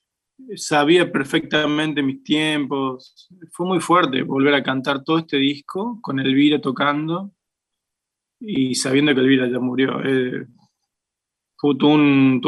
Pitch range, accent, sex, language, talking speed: 145-190 Hz, Argentinian, male, Spanish, 125 wpm